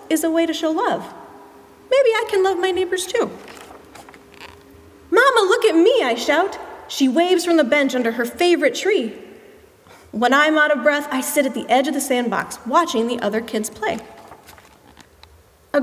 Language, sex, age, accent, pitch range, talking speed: English, female, 30-49, American, 255-350 Hz, 180 wpm